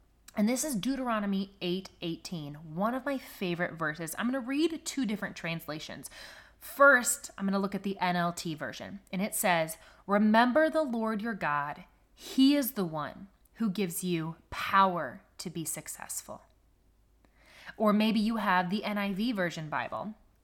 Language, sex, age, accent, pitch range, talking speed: English, female, 20-39, American, 170-220 Hz, 150 wpm